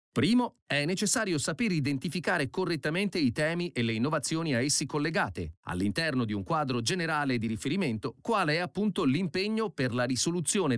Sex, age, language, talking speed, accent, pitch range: male, 40-59, Italian, 155 wpm, native, 115-175 Hz